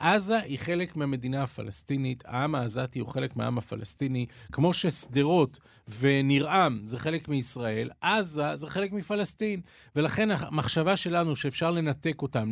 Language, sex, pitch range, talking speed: Hebrew, male, 130-165 Hz, 130 wpm